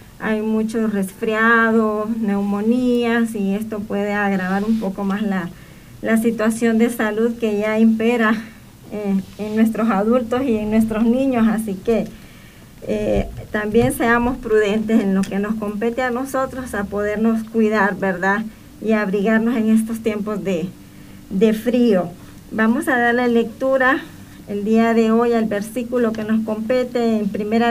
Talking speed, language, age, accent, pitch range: 145 wpm, Spanish, 40-59, American, 210-240 Hz